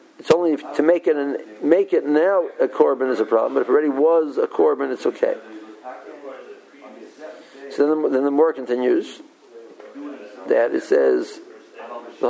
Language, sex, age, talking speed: English, male, 60-79, 170 wpm